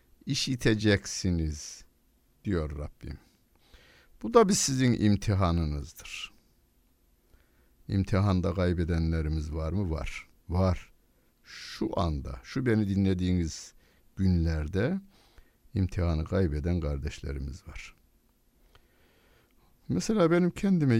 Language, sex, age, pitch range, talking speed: Turkish, male, 60-79, 90-140 Hz, 75 wpm